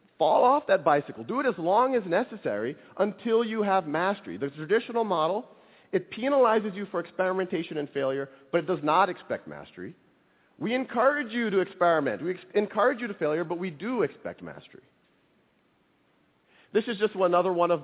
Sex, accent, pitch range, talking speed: male, American, 140-195 Hz, 175 wpm